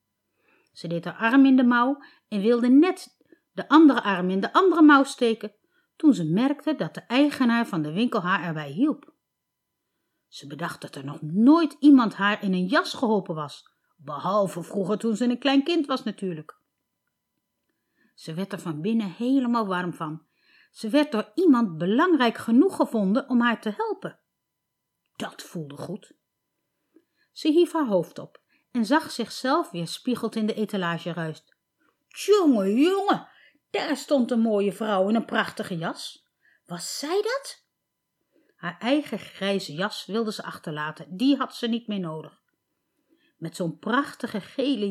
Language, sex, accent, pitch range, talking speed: Dutch, female, Dutch, 180-285 Hz, 160 wpm